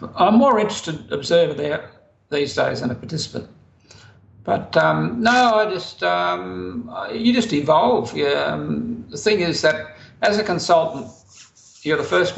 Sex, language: male, English